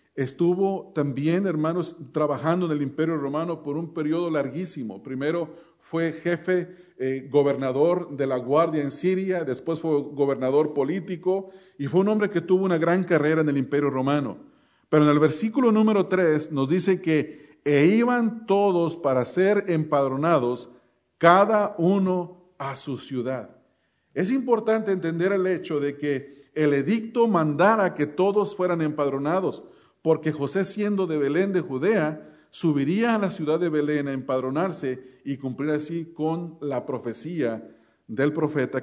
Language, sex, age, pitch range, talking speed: English, male, 40-59, 135-180 Hz, 150 wpm